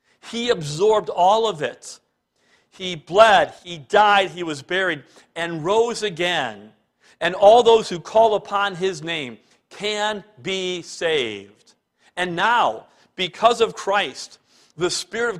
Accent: American